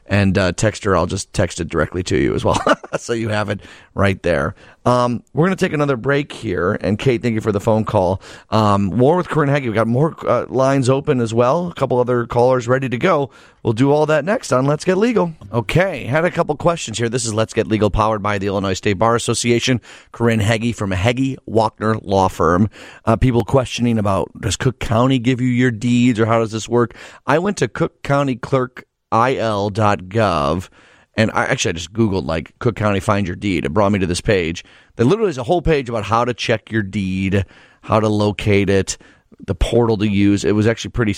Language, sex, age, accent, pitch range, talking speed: English, male, 30-49, American, 100-125 Hz, 225 wpm